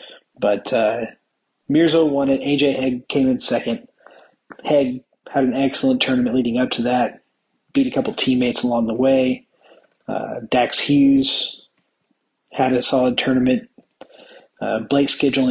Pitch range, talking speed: 120-135 Hz, 140 wpm